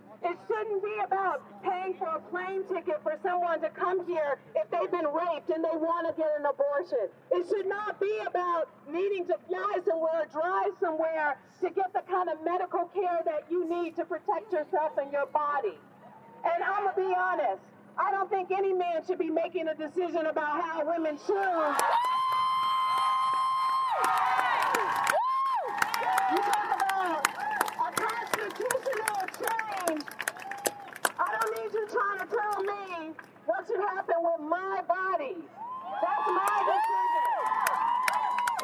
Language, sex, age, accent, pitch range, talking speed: English, female, 50-69, American, 340-430 Hz, 140 wpm